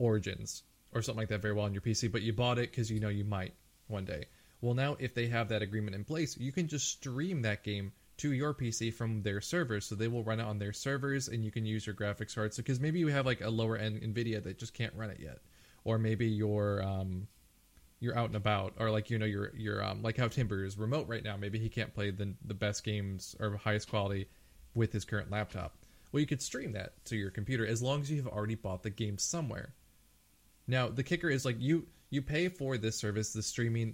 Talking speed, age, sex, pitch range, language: 245 wpm, 20-39, male, 105-120 Hz, English